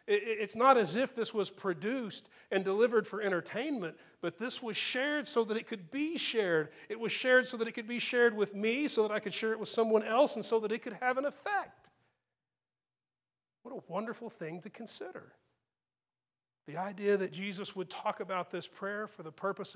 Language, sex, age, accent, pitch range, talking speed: English, male, 40-59, American, 175-225 Hz, 205 wpm